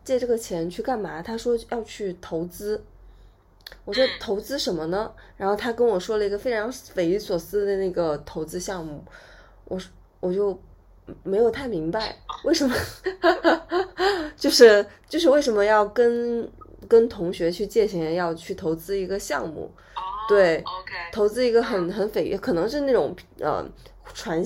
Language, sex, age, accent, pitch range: Chinese, female, 20-39, native, 185-255 Hz